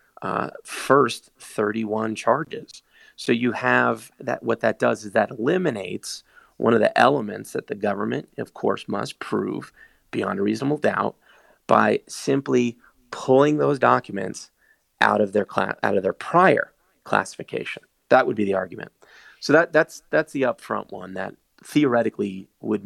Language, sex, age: English, male, 30-49